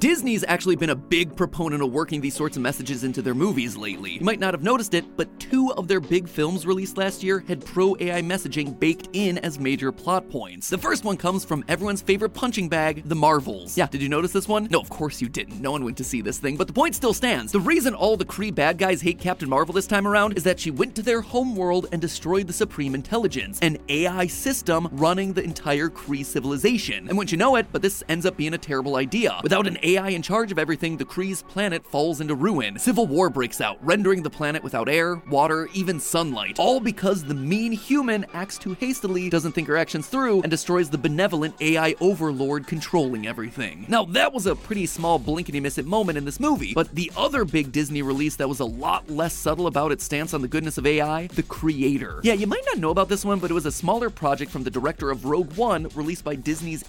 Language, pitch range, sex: English, 150-195 Hz, male